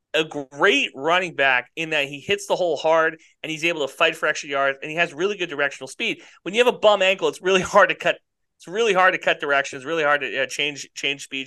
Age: 30-49